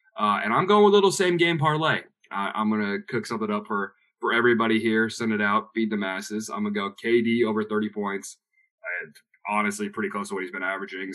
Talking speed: 230 wpm